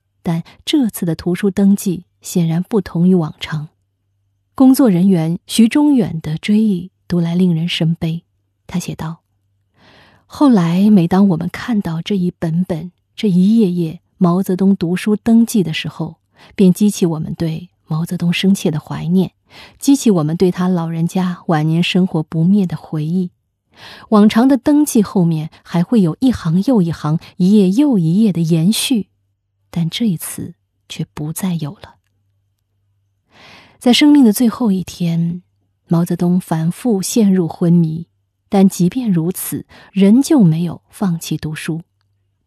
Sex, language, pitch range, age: female, Chinese, 160-200 Hz, 20-39